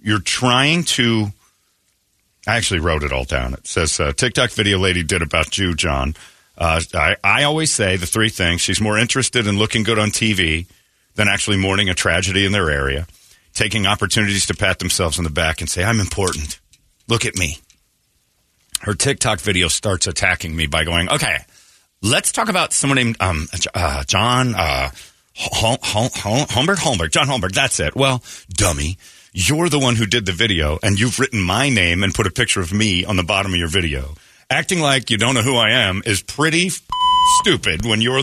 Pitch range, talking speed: 95-140 Hz, 200 wpm